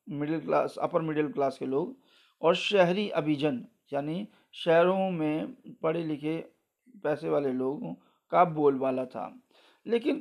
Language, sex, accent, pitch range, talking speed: Hindi, male, native, 145-185 Hz, 130 wpm